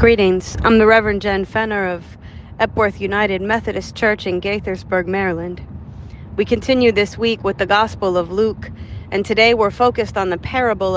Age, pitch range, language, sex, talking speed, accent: 40-59, 185-225 Hz, English, female, 165 wpm, American